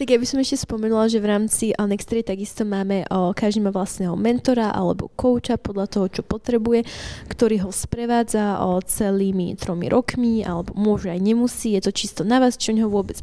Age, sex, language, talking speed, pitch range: 20-39, female, Slovak, 180 wpm, 190-225 Hz